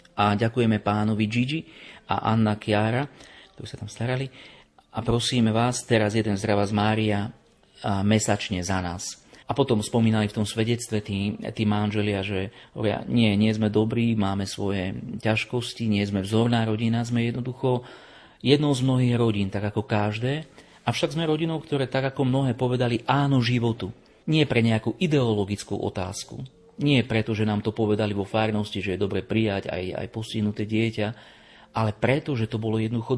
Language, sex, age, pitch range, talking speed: Slovak, male, 40-59, 105-130 Hz, 160 wpm